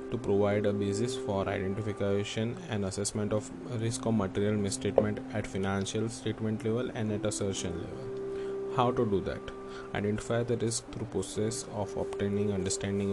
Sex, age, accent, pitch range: male, 20-39, native, 95-115 Hz